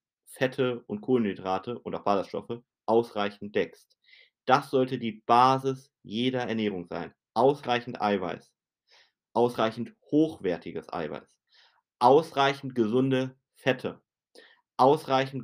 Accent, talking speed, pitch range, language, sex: German, 95 wpm, 100-130 Hz, German, male